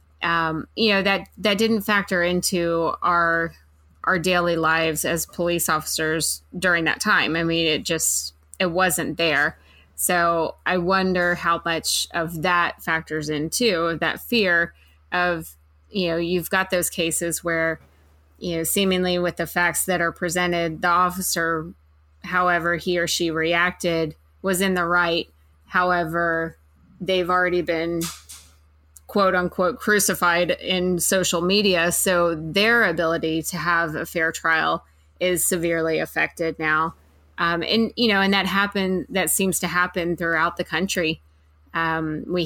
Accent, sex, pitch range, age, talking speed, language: American, female, 160-180 Hz, 20-39, 145 wpm, English